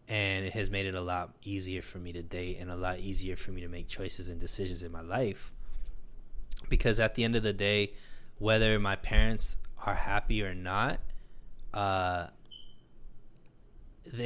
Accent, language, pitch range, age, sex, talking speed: American, English, 95-105 Hz, 20-39, male, 175 wpm